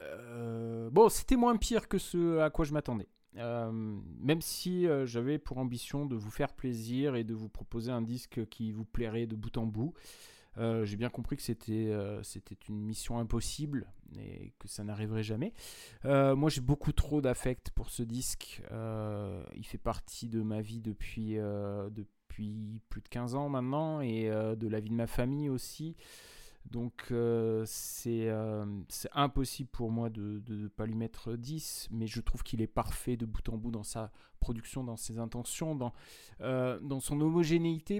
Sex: male